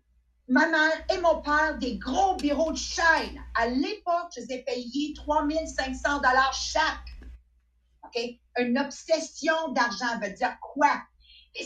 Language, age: English, 50-69